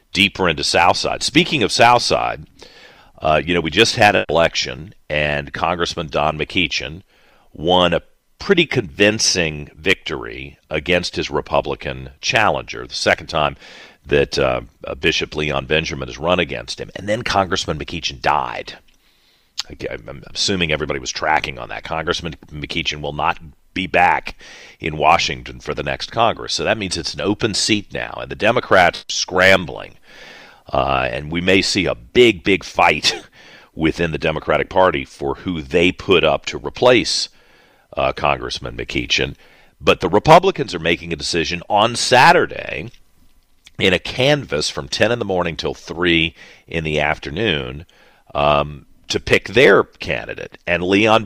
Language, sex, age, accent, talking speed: English, male, 40-59, American, 150 wpm